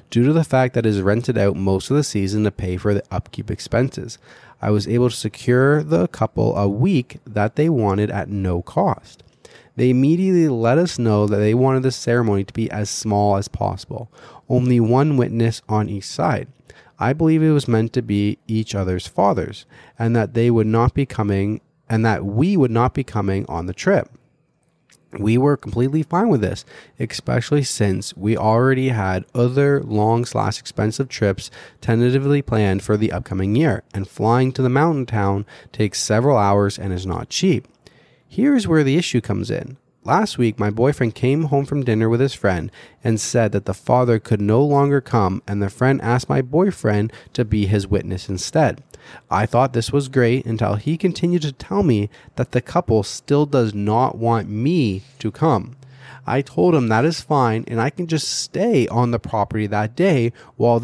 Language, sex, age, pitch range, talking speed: English, male, 30-49, 105-140 Hz, 190 wpm